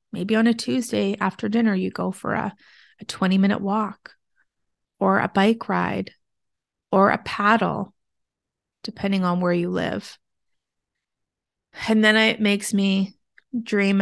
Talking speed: 135 wpm